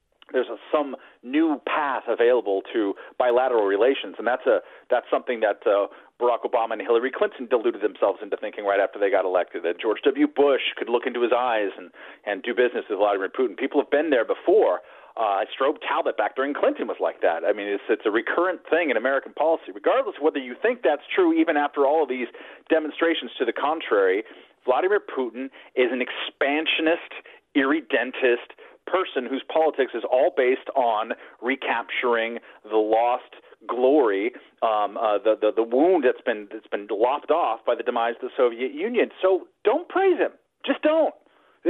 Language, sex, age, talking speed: English, male, 40-59, 185 wpm